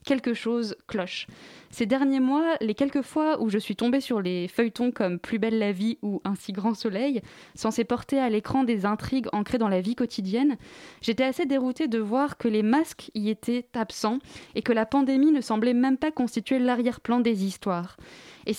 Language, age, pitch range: French, 20-39, 215-255 Hz